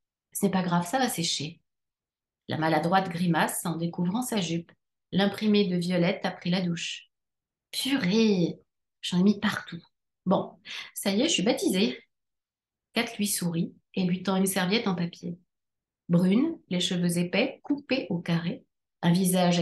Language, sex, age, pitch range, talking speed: French, female, 30-49, 175-220 Hz, 175 wpm